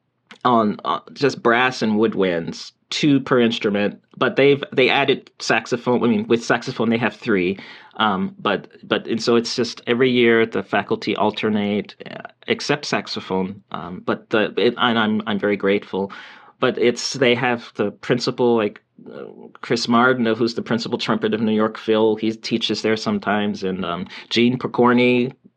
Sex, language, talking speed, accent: male, English, 165 wpm, American